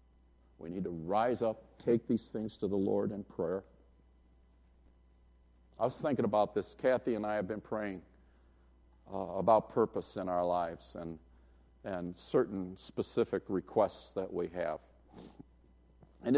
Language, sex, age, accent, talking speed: English, male, 50-69, American, 145 wpm